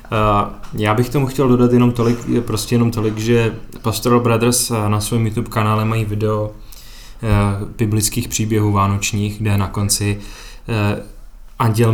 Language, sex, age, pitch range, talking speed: Czech, male, 20-39, 105-115 Hz, 120 wpm